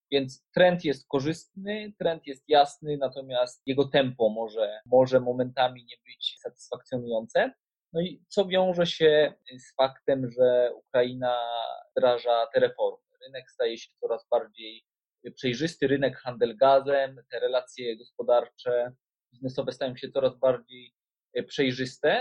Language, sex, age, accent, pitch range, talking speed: Polish, male, 20-39, native, 125-160 Hz, 120 wpm